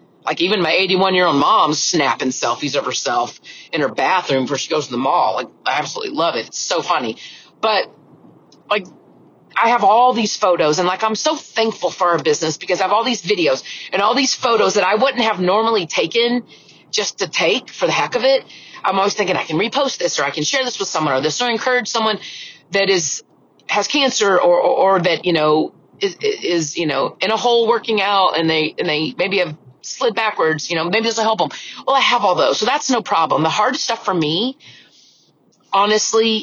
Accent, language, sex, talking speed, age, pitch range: American, English, female, 220 wpm, 30-49, 165-225 Hz